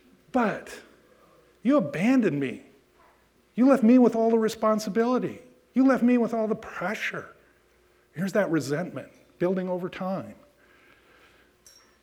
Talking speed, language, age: 120 wpm, English, 50-69